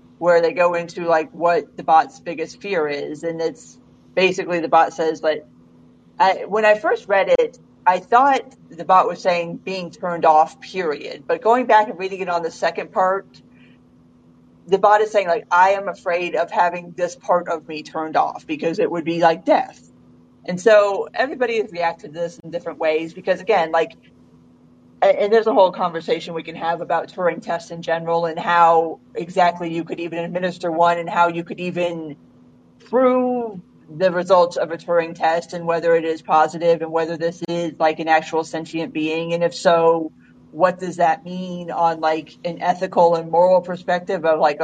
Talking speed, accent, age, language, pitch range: 190 wpm, American, 40-59, English, 160-185 Hz